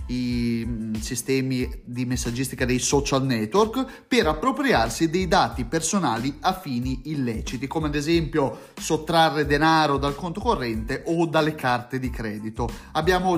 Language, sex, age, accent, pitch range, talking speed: Italian, male, 30-49, native, 135-195 Hz, 130 wpm